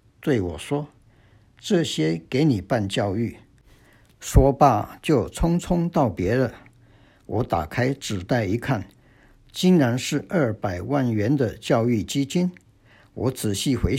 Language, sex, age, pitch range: Chinese, male, 60-79, 105-135 Hz